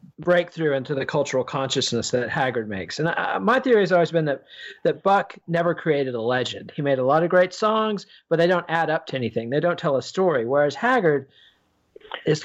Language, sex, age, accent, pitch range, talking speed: English, male, 40-59, American, 140-180 Hz, 210 wpm